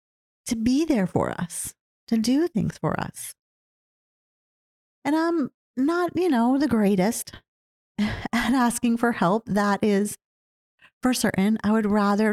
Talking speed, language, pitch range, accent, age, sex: 135 wpm, English, 190-240 Hz, American, 40-59, female